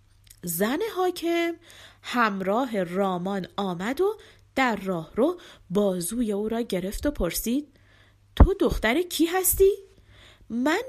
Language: Persian